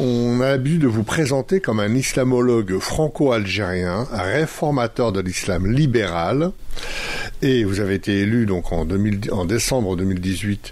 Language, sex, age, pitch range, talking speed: French, male, 60-79, 95-125 Hz, 140 wpm